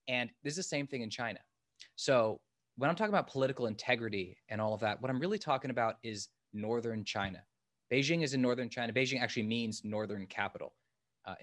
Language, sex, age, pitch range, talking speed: English, male, 20-39, 105-125 Hz, 200 wpm